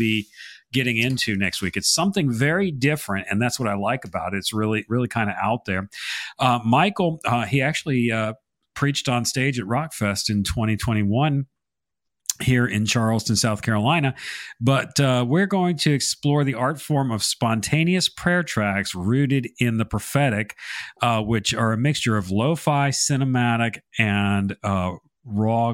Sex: male